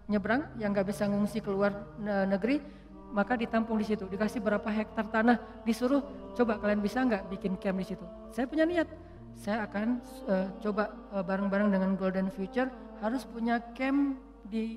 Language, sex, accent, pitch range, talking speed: Indonesian, female, native, 205-240 Hz, 165 wpm